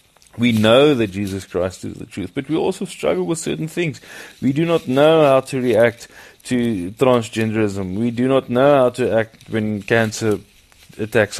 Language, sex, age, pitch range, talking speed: English, male, 30-49, 110-130 Hz, 180 wpm